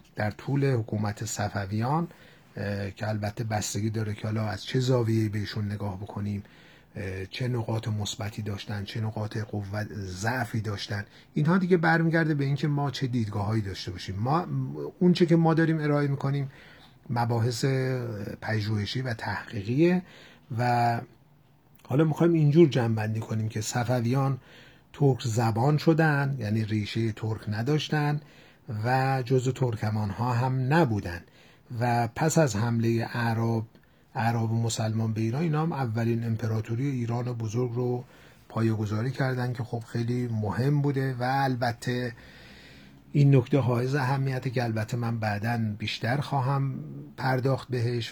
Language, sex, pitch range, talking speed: Persian, male, 110-140 Hz, 130 wpm